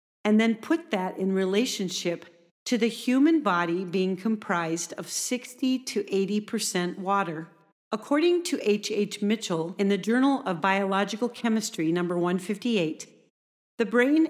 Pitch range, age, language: 180-235 Hz, 50-69, English